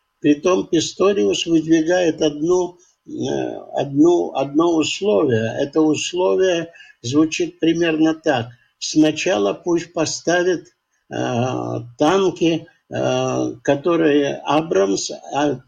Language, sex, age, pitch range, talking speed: Russian, male, 60-79, 140-165 Hz, 80 wpm